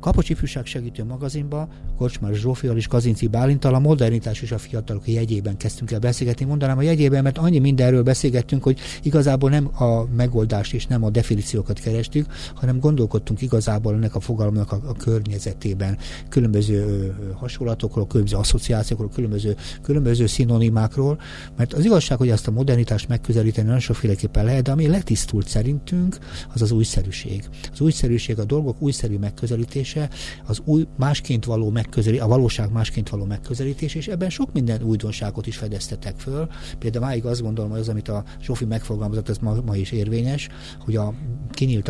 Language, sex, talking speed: Hungarian, male, 160 wpm